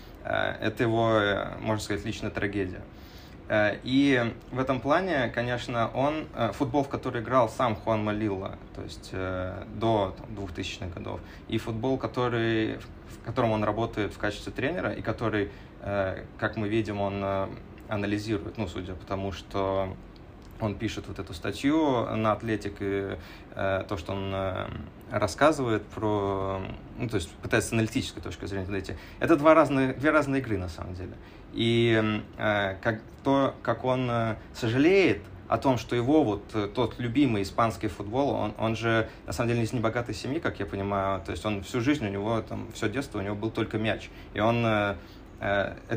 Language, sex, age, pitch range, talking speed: Russian, male, 20-39, 100-115 Hz, 165 wpm